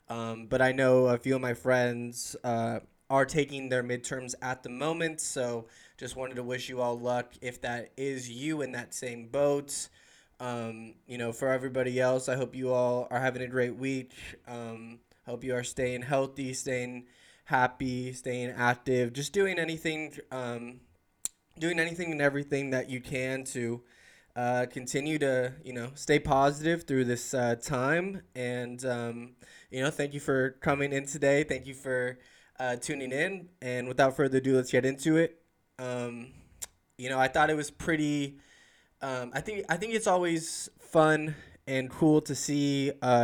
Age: 20-39